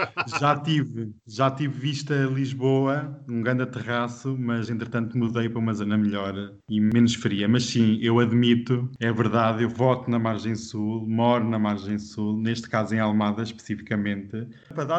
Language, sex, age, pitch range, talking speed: Portuguese, male, 20-39, 115-135 Hz, 160 wpm